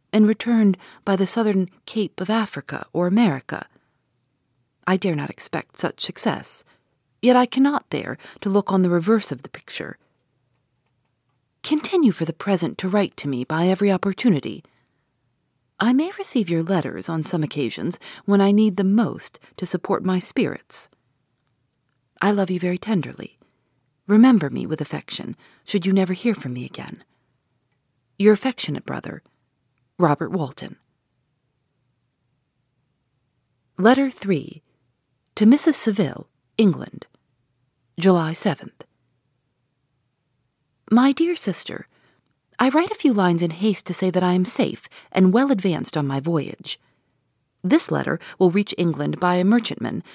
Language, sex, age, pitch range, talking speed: English, female, 40-59, 135-205 Hz, 140 wpm